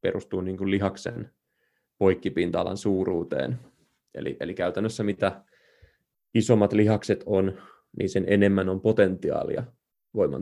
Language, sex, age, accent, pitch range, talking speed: Finnish, male, 20-39, native, 95-105 Hz, 100 wpm